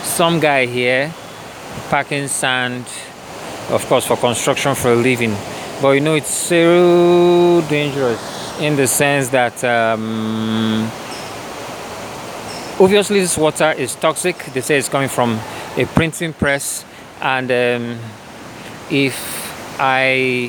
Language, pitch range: English, 130-170 Hz